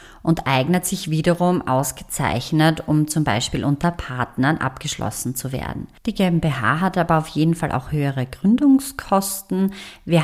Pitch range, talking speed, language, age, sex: 140-180 Hz, 140 wpm, German, 30-49, female